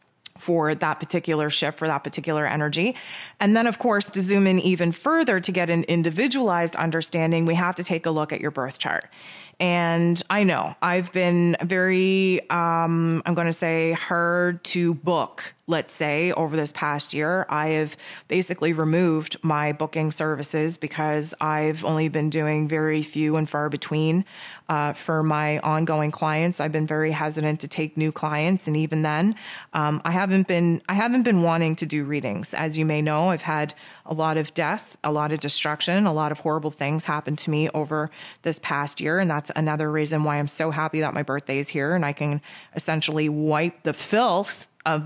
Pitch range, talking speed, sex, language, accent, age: 150-175 Hz, 190 wpm, female, English, American, 30-49